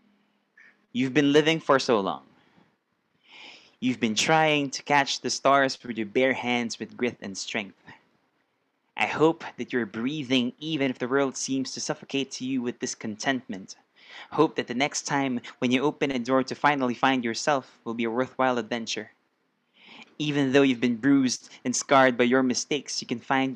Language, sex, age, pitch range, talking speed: English, male, 20-39, 125-150 Hz, 175 wpm